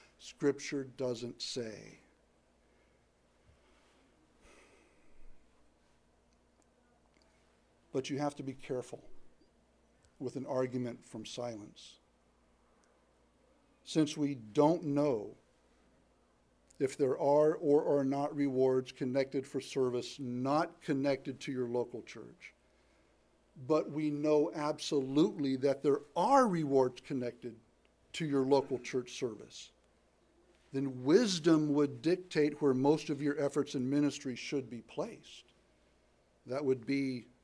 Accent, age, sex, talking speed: American, 60-79, male, 105 wpm